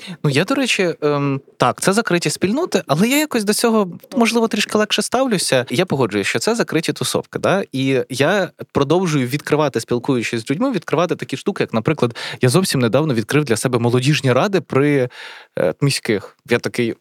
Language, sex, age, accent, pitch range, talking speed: Ukrainian, male, 20-39, native, 125-185 Hz, 170 wpm